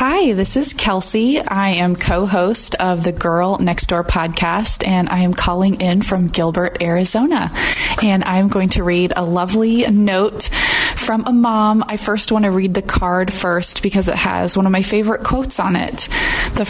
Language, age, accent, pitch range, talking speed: English, 20-39, American, 175-210 Hz, 185 wpm